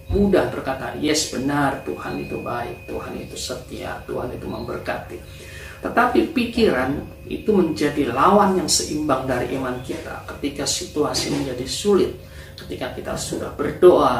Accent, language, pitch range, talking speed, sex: native, Indonesian, 130-170 Hz, 130 wpm, male